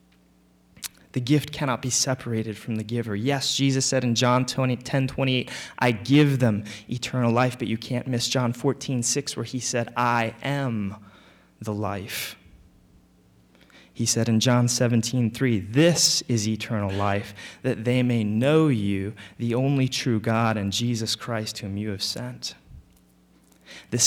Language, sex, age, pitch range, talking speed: English, male, 20-39, 105-130 Hz, 145 wpm